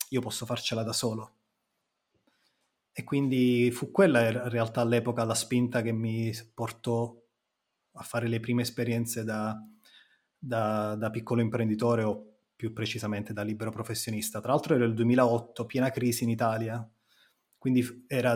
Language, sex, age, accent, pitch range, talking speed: Italian, male, 30-49, native, 115-130 Hz, 140 wpm